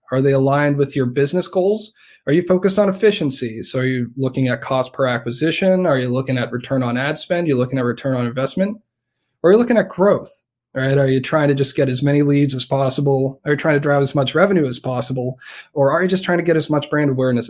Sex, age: male, 30-49